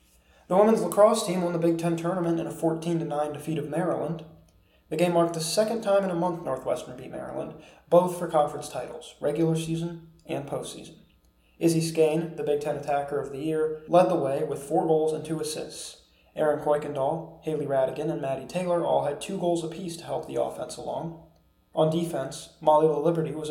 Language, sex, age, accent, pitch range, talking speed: English, male, 20-39, American, 150-170 Hz, 190 wpm